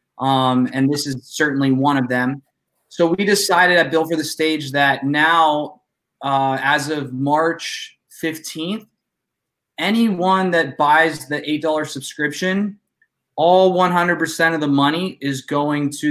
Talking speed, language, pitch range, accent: 140 wpm, English, 145-165 Hz, American